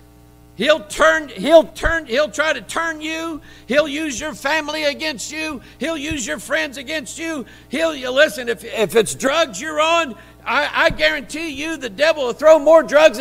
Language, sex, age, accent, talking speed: English, male, 50-69, American, 180 wpm